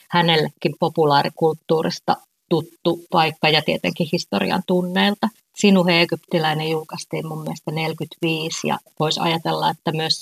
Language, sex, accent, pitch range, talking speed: Finnish, female, native, 155-180 Hz, 110 wpm